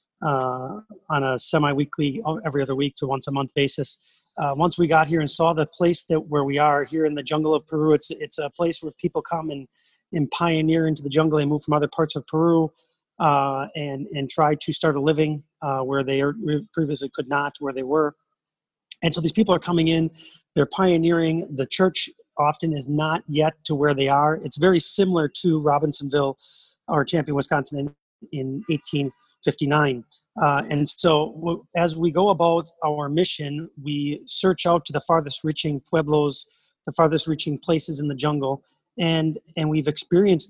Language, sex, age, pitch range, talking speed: English, male, 30-49, 145-165 Hz, 190 wpm